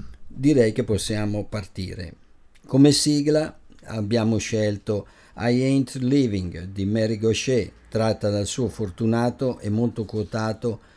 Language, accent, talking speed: English, Italian, 115 wpm